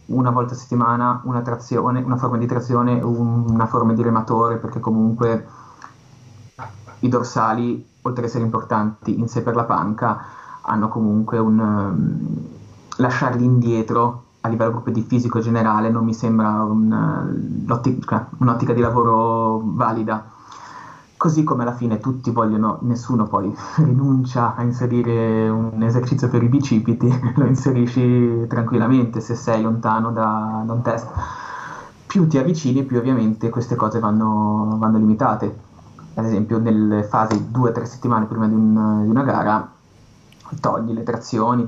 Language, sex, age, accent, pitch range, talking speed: Italian, male, 20-39, native, 110-125 Hz, 140 wpm